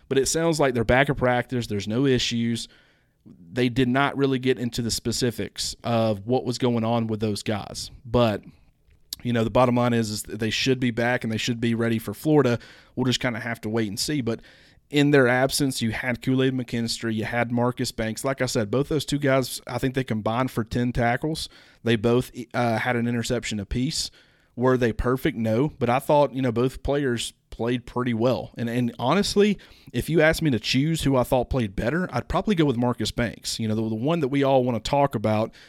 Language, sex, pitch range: English, male, 115-130 Hz